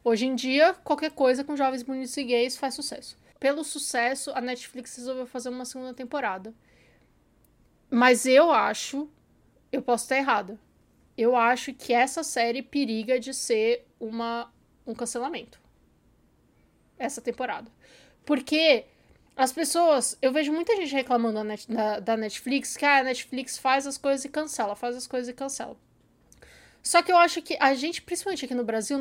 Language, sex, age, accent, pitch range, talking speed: Portuguese, female, 20-39, Brazilian, 240-290 Hz, 155 wpm